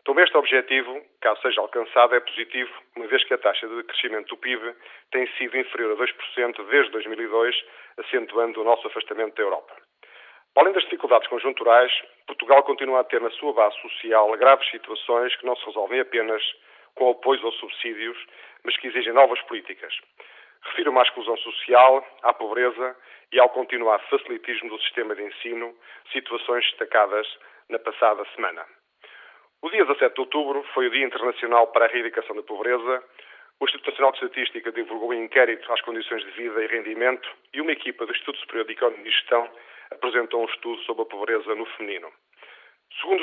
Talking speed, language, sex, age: 175 wpm, Portuguese, male, 40-59